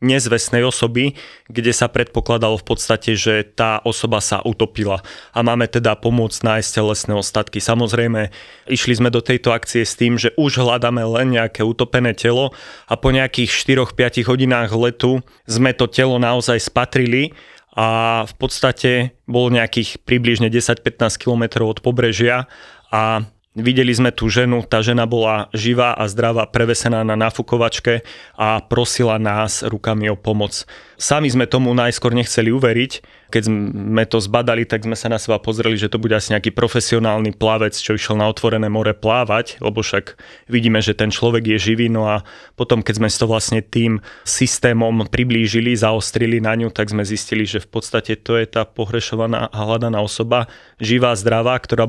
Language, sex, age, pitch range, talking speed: Slovak, male, 30-49, 110-120 Hz, 165 wpm